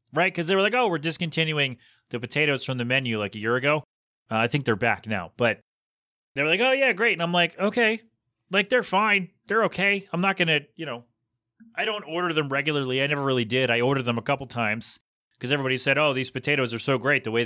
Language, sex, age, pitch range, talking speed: English, male, 30-49, 120-165 Hz, 245 wpm